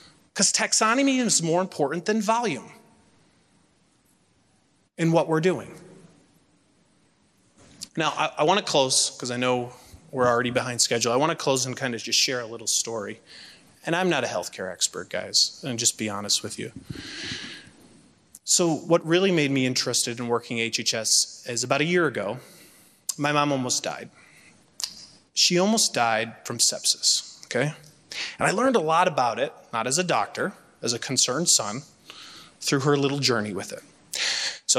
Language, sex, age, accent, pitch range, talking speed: English, male, 30-49, American, 120-170 Hz, 165 wpm